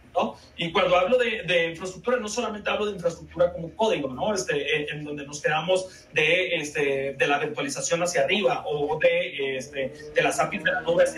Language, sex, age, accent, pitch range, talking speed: Spanish, male, 30-49, Mexican, 160-225 Hz, 200 wpm